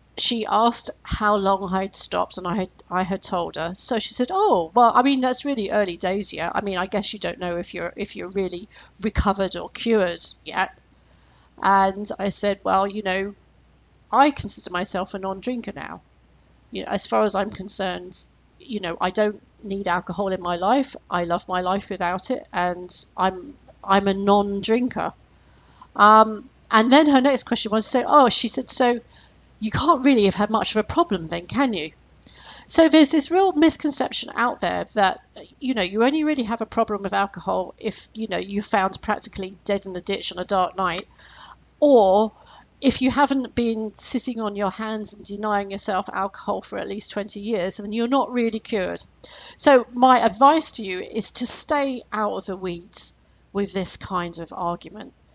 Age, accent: 40-59, British